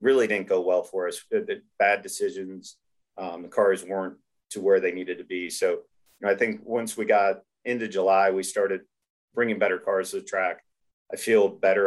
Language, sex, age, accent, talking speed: English, male, 40-59, American, 195 wpm